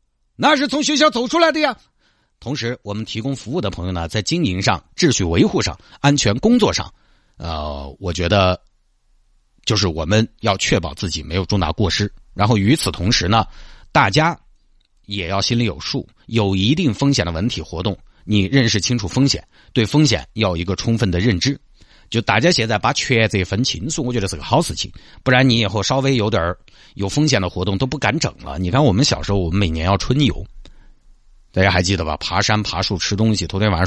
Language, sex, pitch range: Chinese, male, 95-120 Hz